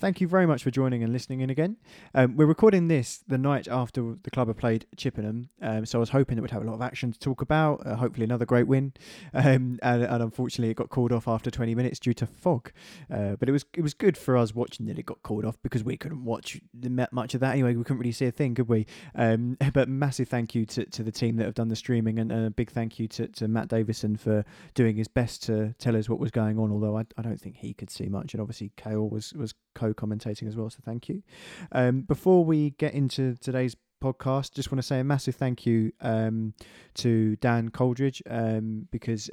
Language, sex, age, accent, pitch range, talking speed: English, male, 20-39, British, 110-135 Hz, 250 wpm